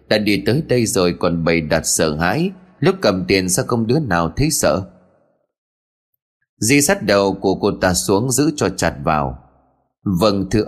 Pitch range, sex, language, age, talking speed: 90-130 Hz, male, Vietnamese, 20-39, 180 wpm